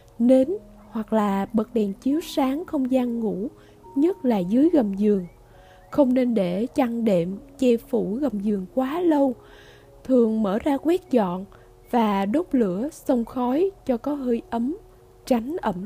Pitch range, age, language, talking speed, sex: 210-285 Hz, 20-39, Vietnamese, 160 wpm, female